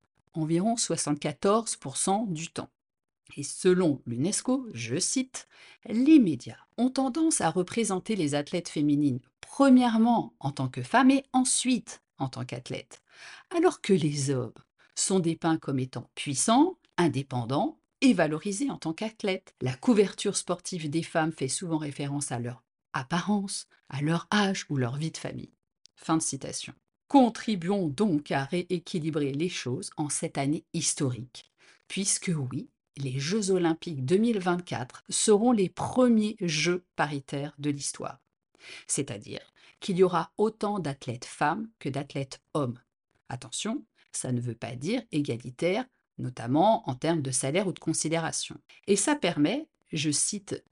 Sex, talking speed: female, 140 wpm